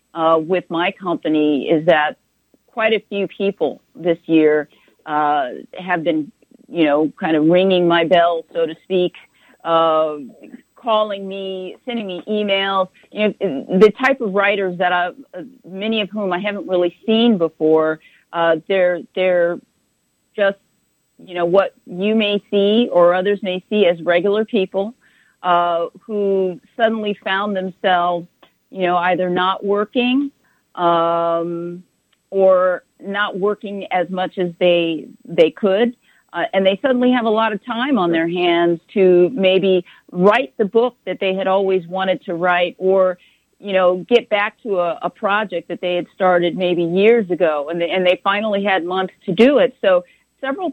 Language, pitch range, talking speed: Arabic, 175-205 Hz, 160 wpm